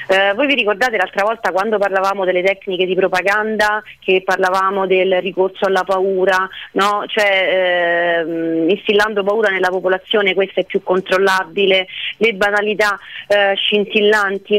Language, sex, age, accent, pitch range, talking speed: Italian, female, 40-59, native, 185-220 Hz, 135 wpm